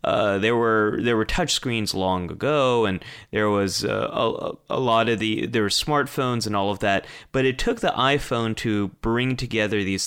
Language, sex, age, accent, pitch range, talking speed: English, male, 30-49, American, 95-125 Hz, 205 wpm